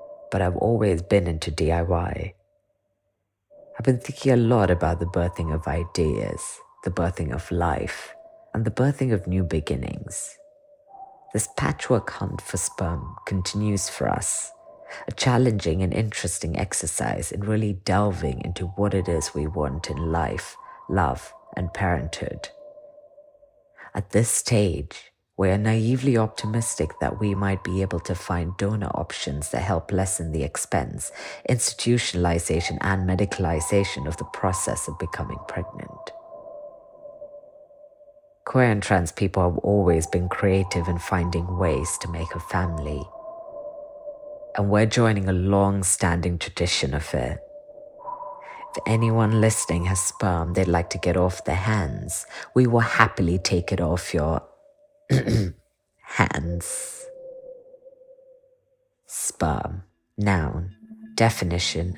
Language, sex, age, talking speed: English, female, 30-49, 125 wpm